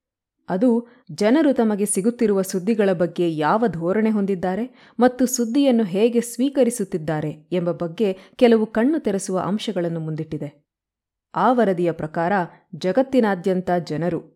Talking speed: 105 wpm